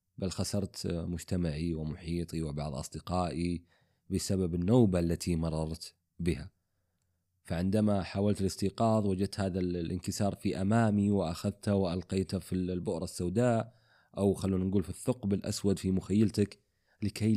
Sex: male